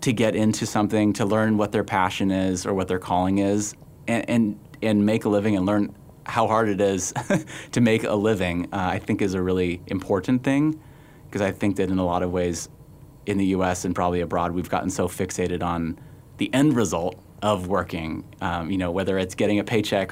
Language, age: English, 30-49